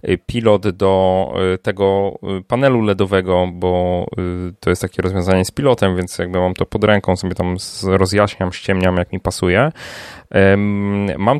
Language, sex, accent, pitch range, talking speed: Polish, male, native, 90-105 Hz, 135 wpm